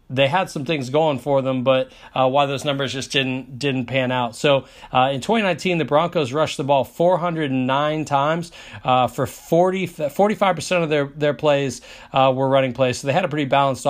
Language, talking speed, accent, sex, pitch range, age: English, 210 wpm, American, male, 130-155 Hz, 40-59